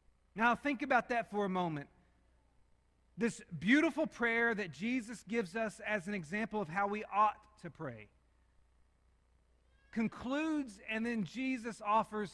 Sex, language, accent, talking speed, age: male, English, American, 135 wpm, 40-59